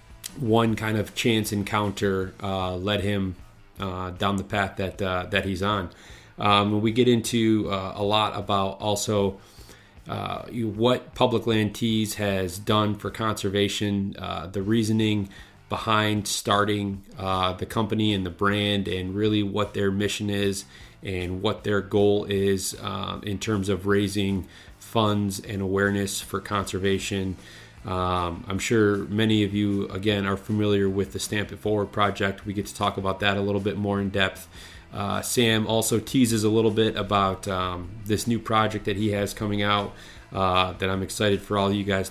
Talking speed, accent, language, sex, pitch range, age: 170 wpm, American, English, male, 95-105 Hz, 30-49